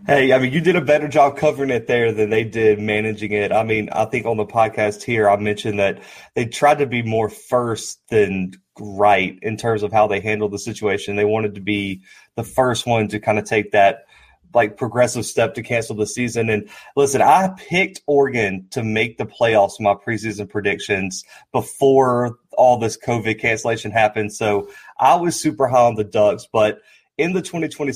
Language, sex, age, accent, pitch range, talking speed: English, male, 30-49, American, 110-135 Hz, 200 wpm